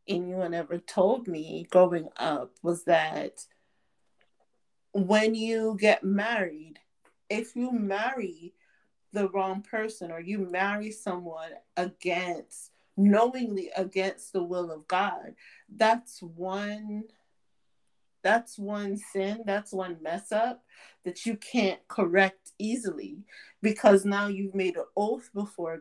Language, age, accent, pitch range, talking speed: English, 30-49, American, 180-215 Hz, 115 wpm